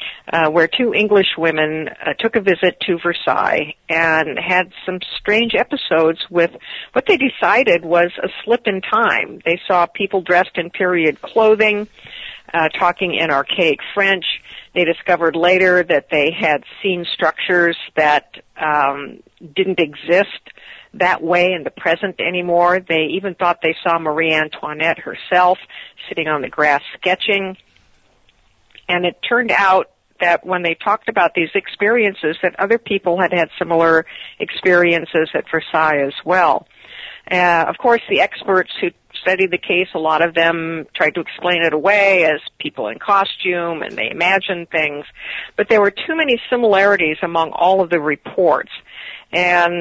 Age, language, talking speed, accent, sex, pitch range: 50-69, English, 155 wpm, American, female, 165-195 Hz